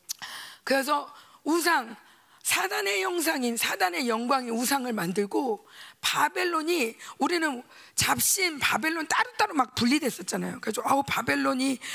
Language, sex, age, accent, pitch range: Korean, female, 40-59, native, 215-340 Hz